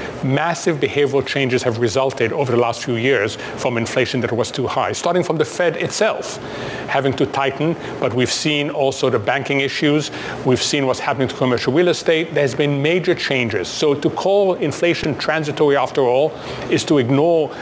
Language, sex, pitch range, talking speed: English, male, 130-160 Hz, 180 wpm